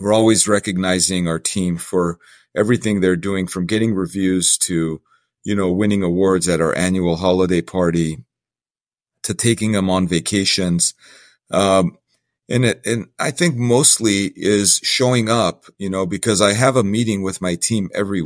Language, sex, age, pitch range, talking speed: English, male, 40-59, 90-105 Hz, 160 wpm